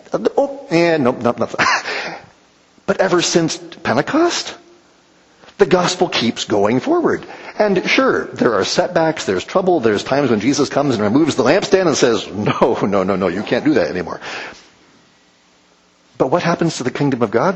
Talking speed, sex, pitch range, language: 170 wpm, male, 125-190 Hz, English